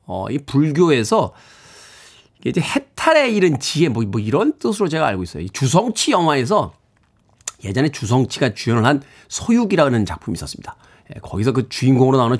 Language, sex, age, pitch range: Korean, male, 40-59, 125-190 Hz